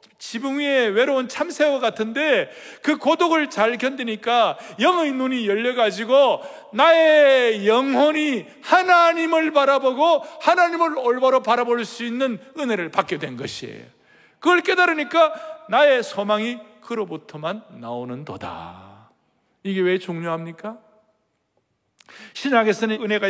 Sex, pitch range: male, 210-280 Hz